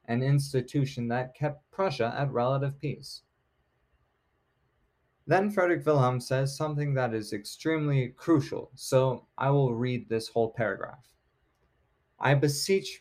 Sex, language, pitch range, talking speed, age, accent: male, English, 115-140 Hz, 120 wpm, 20-39, American